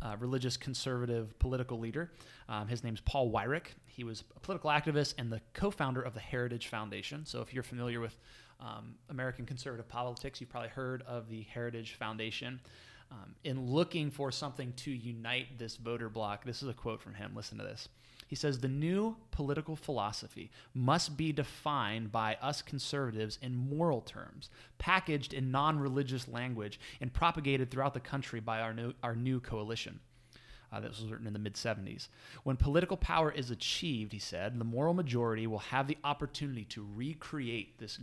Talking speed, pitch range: 175 wpm, 115-140 Hz